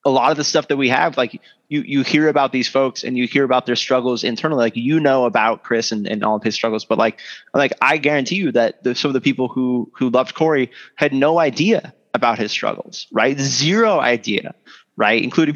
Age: 20-39